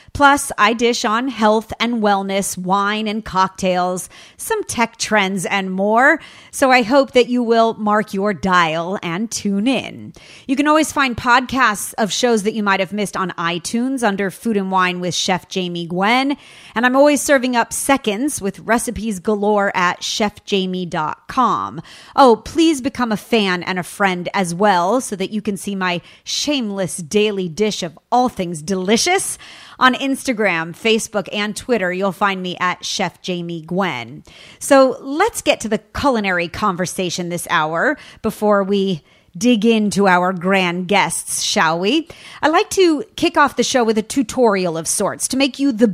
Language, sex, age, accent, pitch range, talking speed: English, female, 30-49, American, 190-245 Hz, 170 wpm